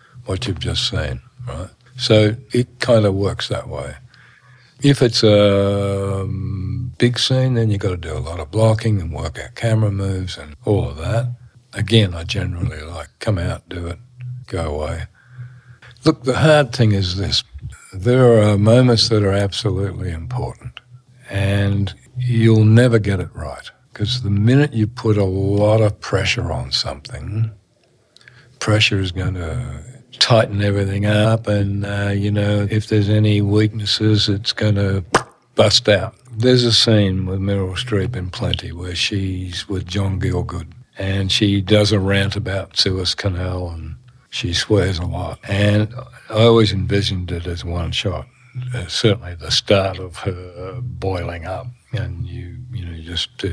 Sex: male